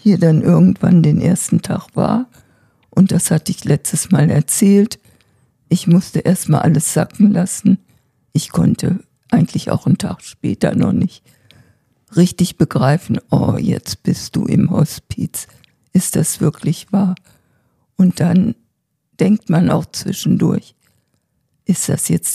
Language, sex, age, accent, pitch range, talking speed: German, female, 50-69, German, 155-195 Hz, 135 wpm